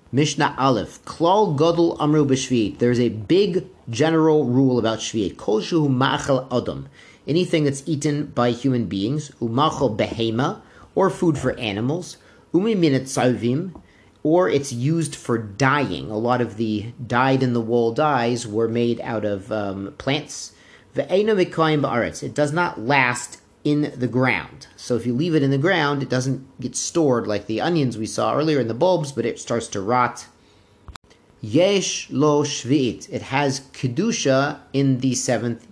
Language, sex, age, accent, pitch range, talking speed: English, male, 30-49, American, 120-150 Hz, 135 wpm